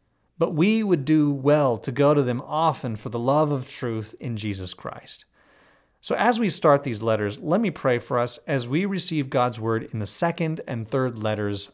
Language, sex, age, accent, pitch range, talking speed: English, male, 40-59, American, 120-155 Hz, 205 wpm